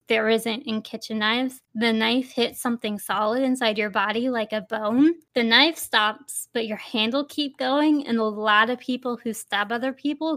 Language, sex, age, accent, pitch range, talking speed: English, female, 10-29, American, 215-255 Hz, 195 wpm